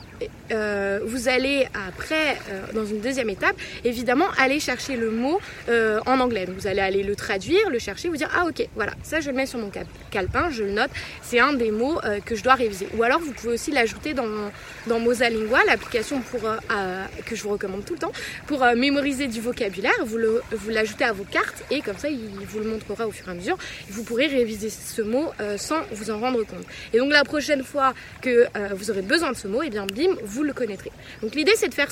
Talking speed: 245 wpm